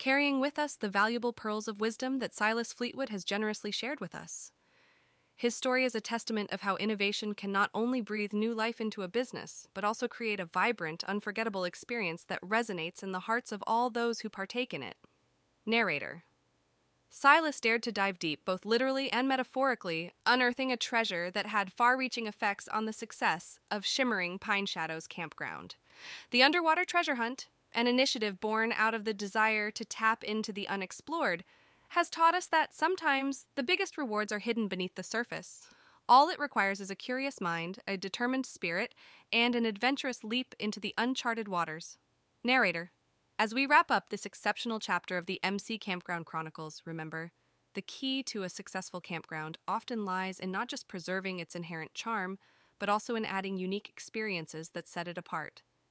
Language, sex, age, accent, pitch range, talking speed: English, female, 20-39, American, 190-245 Hz, 175 wpm